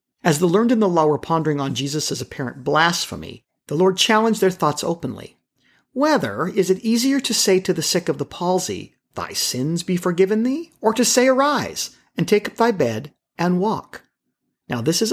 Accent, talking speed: American, 195 wpm